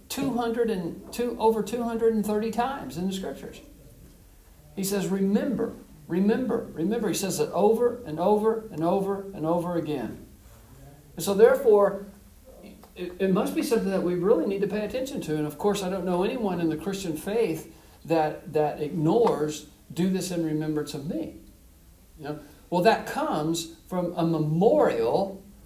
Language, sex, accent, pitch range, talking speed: English, male, American, 160-220 Hz, 160 wpm